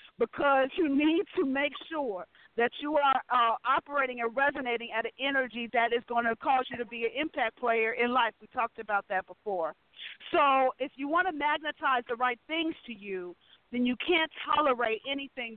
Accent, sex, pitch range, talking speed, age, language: American, female, 235-305 Hz, 195 wpm, 50-69, English